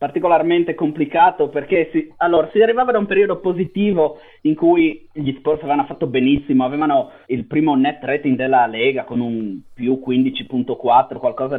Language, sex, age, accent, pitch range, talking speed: Italian, male, 30-49, native, 140-205 Hz, 155 wpm